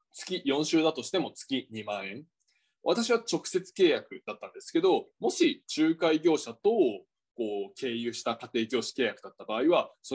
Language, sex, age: Japanese, male, 20-39